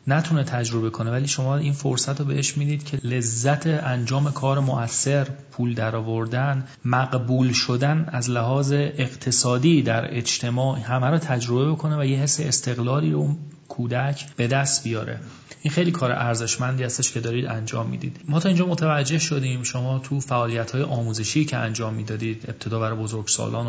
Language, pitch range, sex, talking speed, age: Persian, 120-145 Hz, male, 155 wpm, 30-49